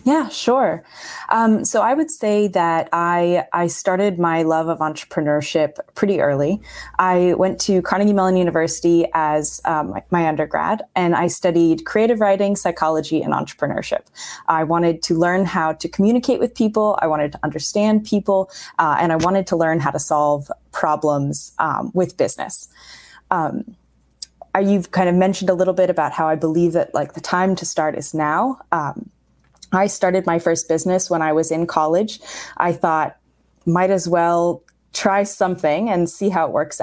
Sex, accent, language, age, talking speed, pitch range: female, American, English, 20-39, 175 wpm, 160-195 Hz